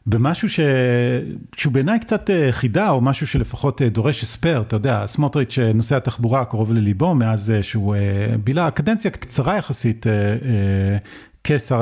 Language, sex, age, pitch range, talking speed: Hebrew, male, 40-59, 110-140 Hz, 125 wpm